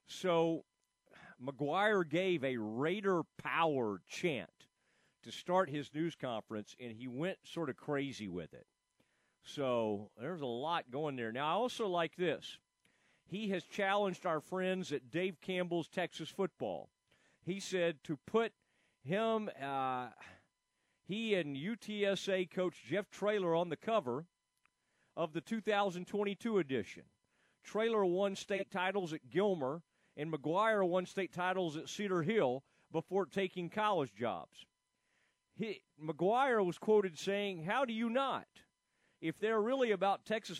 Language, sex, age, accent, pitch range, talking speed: English, male, 40-59, American, 155-200 Hz, 135 wpm